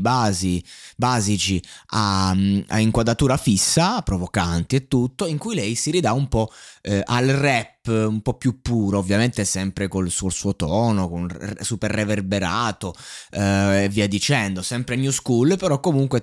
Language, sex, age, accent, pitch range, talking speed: Italian, male, 20-39, native, 100-145 Hz, 155 wpm